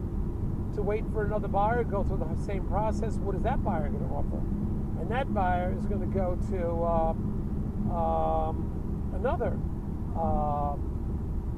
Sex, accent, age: male, American, 50-69